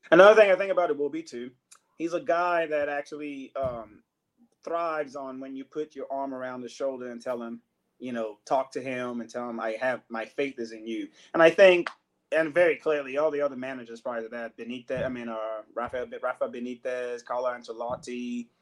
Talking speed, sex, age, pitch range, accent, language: 210 wpm, male, 30-49, 120-170 Hz, American, English